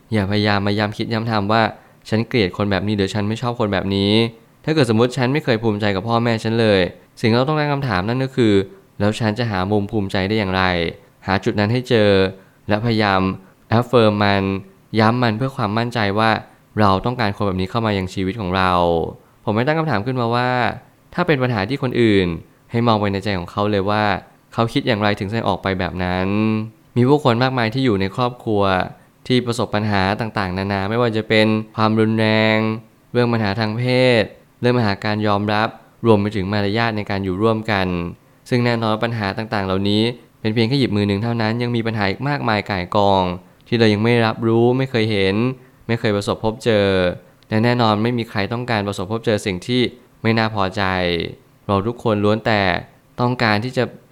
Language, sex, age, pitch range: Thai, male, 20-39, 100-120 Hz